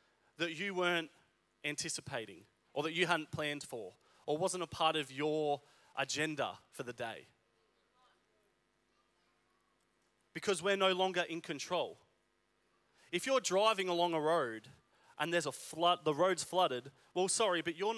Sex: male